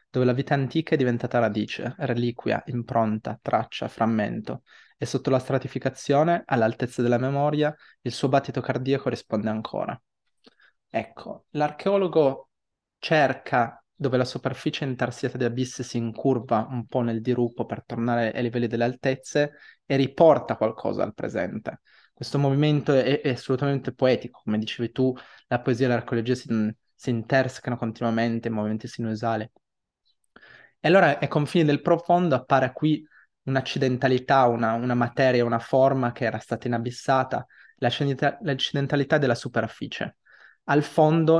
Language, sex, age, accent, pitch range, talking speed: Italian, male, 20-39, native, 120-140 Hz, 135 wpm